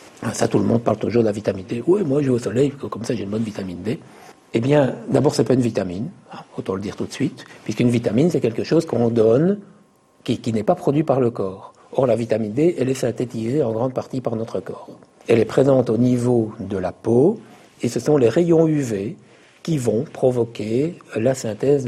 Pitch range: 110-135 Hz